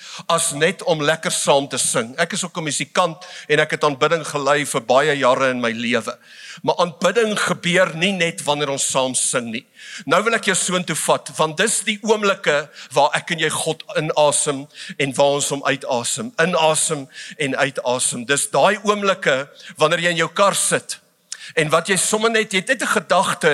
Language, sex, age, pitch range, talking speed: English, male, 50-69, 160-200 Hz, 200 wpm